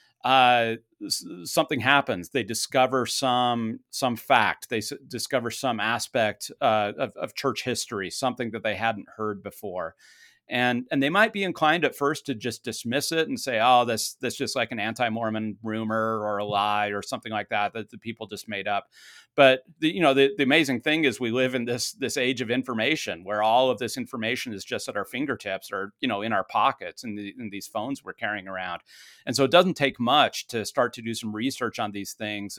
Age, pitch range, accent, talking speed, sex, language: 40-59, 110-135 Hz, American, 210 wpm, male, English